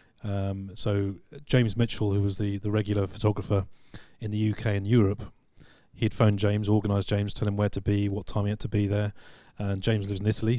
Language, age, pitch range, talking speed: English, 30-49, 105-130 Hz, 210 wpm